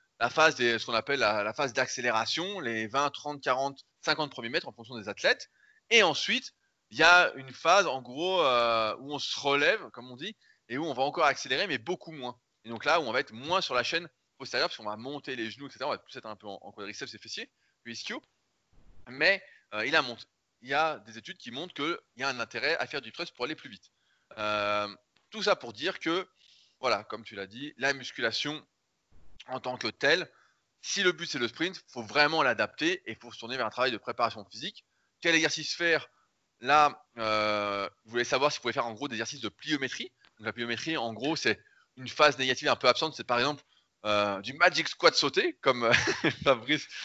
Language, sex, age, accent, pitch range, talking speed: French, male, 20-39, French, 120-160 Hz, 230 wpm